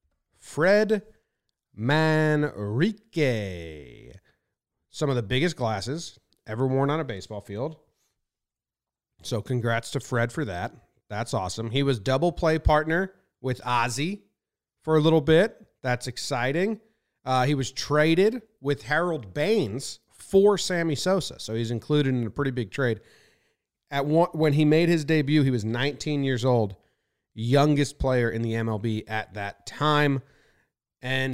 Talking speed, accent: 140 wpm, American